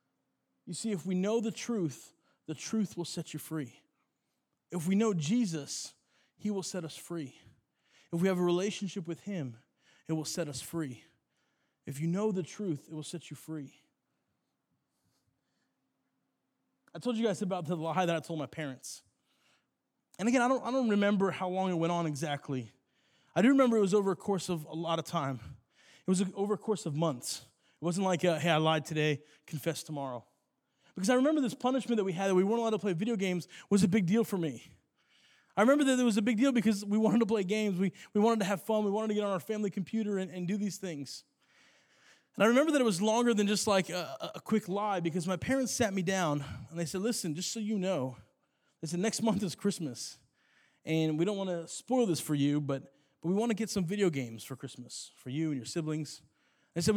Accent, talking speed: American, 225 wpm